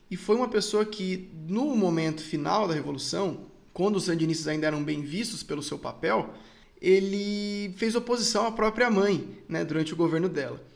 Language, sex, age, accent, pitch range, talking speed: Portuguese, male, 20-39, Brazilian, 160-200 Hz, 175 wpm